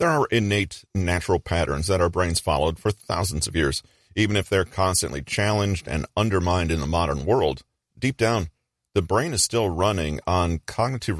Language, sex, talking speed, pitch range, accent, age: English, male, 175 wpm, 80-105 Hz, American, 40-59